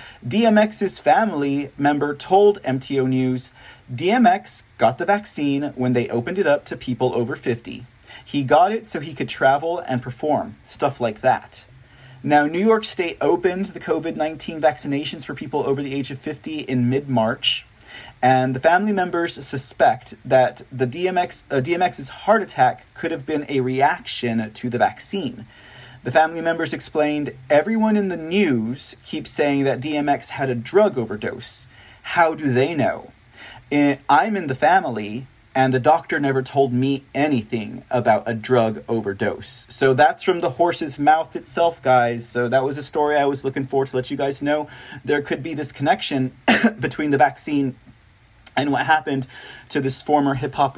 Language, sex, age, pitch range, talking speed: English, male, 30-49, 125-155 Hz, 165 wpm